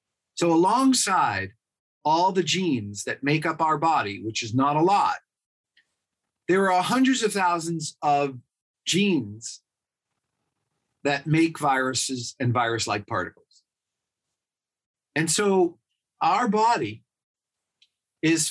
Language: English